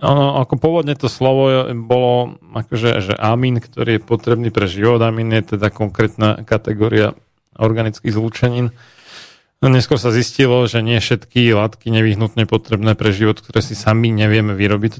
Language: Slovak